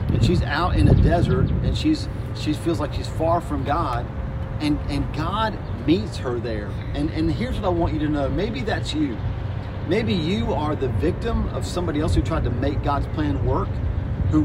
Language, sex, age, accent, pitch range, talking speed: English, male, 40-59, American, 110-145 Hz, 200 wpm